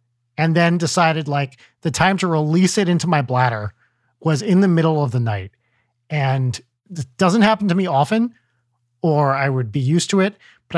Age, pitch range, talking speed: 40-59, 120-170 Hz, 190 wpm